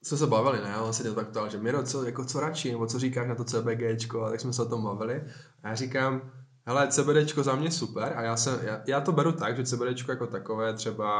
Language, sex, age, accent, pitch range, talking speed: Czech, male, 10-29, native, 110-130 Hz, 255 wpm